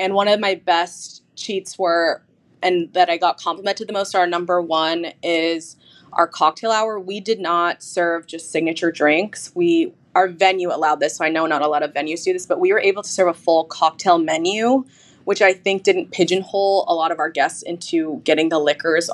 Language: English